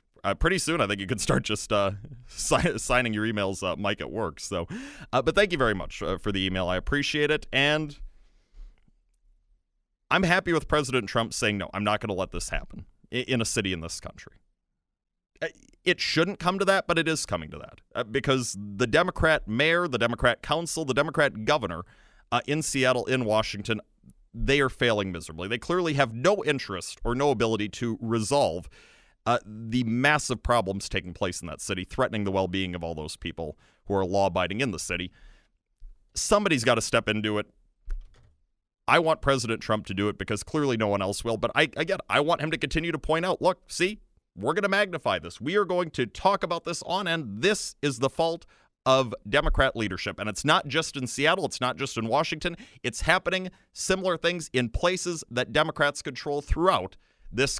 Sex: male